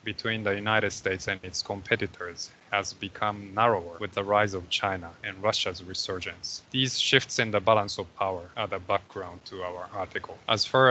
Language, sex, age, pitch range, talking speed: English, male, 20-39, 95-115 Hz, 180 wpm